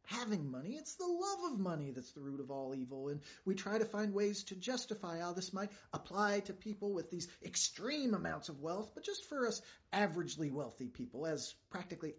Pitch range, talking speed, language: 140-210 Hz, 205 wpm, English